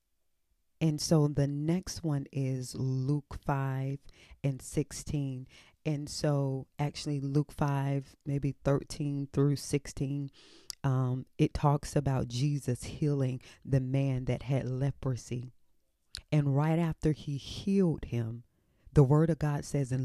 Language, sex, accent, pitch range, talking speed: English, female, American, 130-160 Hz, 125 wpm